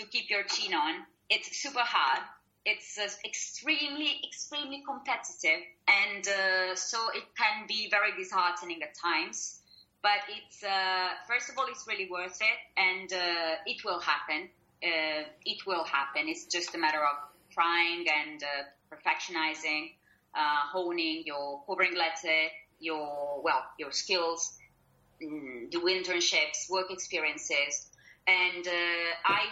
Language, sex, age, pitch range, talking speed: English, female, 30-49, 160-205 Hz, 135 wpm